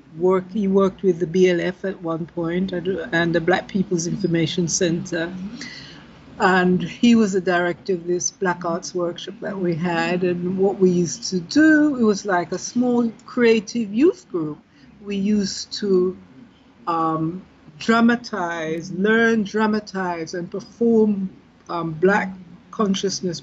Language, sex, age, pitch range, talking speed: English, female, 60-79, 175-205 Hz, 140 wpm